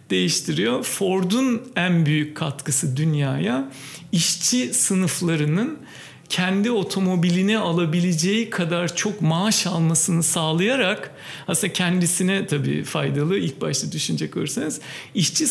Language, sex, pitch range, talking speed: Turkish, male, 165-205 Hz, 95 wpm